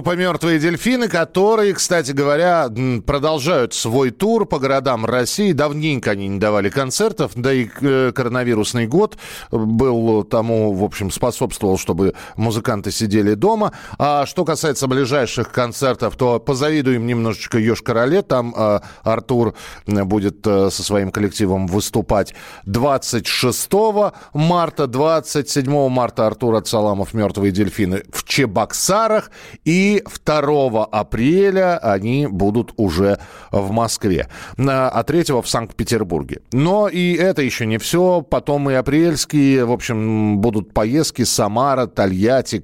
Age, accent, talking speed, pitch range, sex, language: 40-59, native, 120 wpm, 110-150 Hz, male, Russian